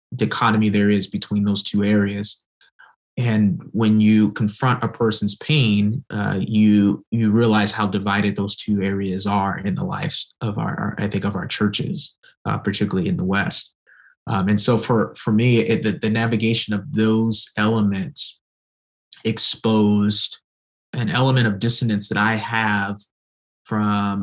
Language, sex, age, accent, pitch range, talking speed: English, male, 20-39, American, 100-110 Hz, 150 wpm